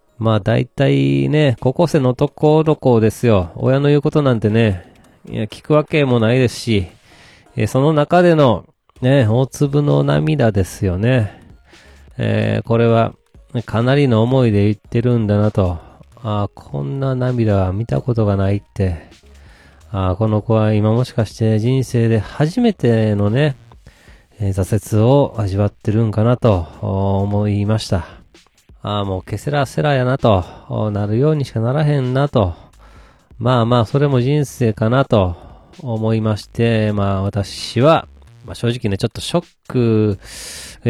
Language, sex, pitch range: Japanese, male, 100-125 Hz